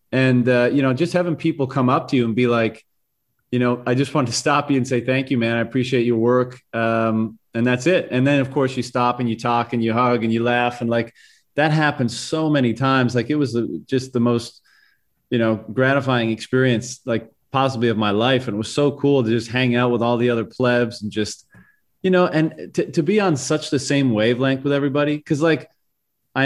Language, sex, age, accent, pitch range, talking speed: English, male, 30-49, American, 115-135 Hz, 235 wpm